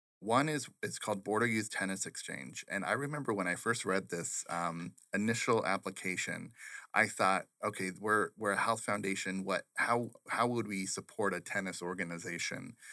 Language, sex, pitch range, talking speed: English, male, 95-115 Hz, 165 wpm